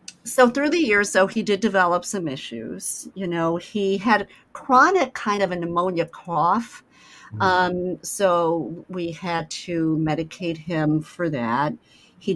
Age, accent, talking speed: 50-69, American, 145 wpm